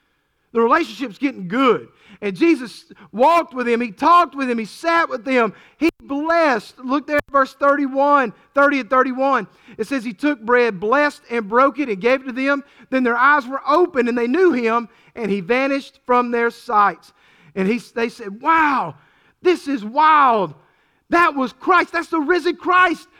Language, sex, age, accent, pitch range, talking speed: English, male, 40-59, American, 220-300 Hz, 185 wpm